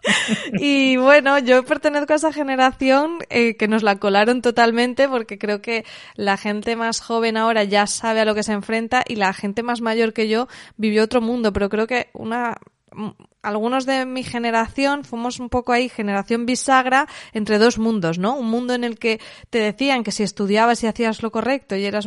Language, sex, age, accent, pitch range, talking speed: Spanish, female, 20-39, Spanish, 200-240 Hz, 195 wpm